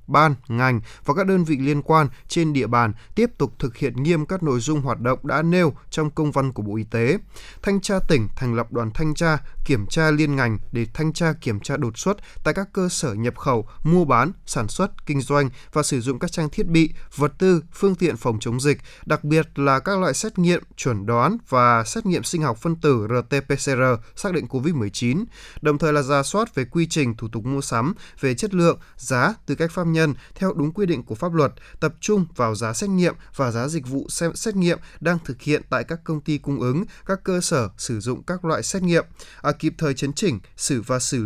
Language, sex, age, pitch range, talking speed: Vietnamese, male, 20-39, 125-170 Hz, 235 wpm